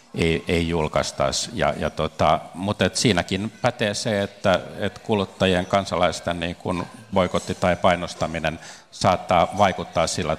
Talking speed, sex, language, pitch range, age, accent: 125 wpm, male, Finnish, 75-90 Hz, 50-69, native